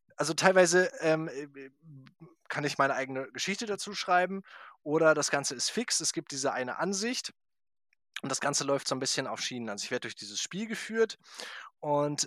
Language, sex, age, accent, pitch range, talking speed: German, male, 20-39, German, 125-165 Hz, 180 wpm